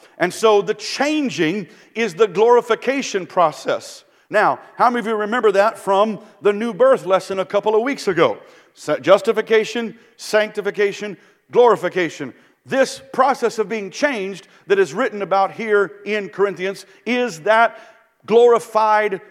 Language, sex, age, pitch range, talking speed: English, male, 50-69, 180-220 Hz, 135 wpm